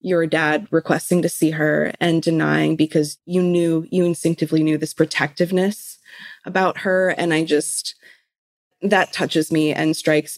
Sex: female